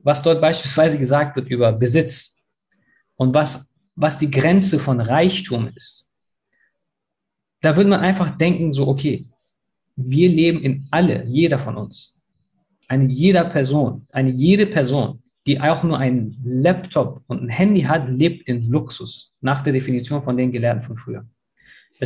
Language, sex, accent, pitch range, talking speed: German, male, German, 130-185 Hz, 150 wpm